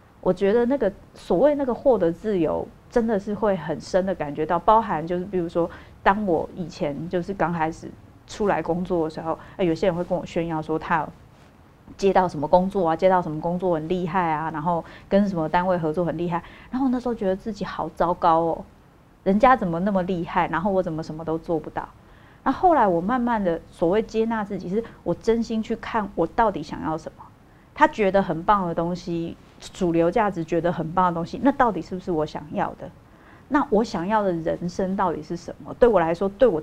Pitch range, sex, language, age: 170-205 Hz, female, Chinese, 30-49